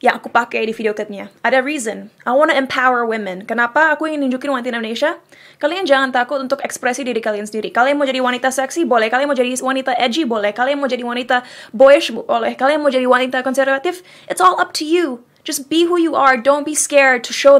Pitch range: 220-275 Hz